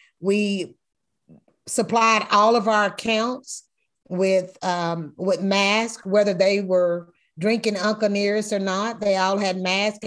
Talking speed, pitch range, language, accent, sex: 130 wpm, 185-235 Hz, English, American, female